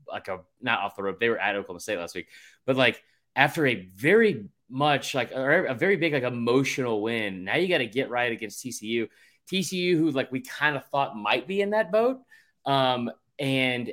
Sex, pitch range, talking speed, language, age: male, 110-145 Hz, 205 wpm, English, 20-39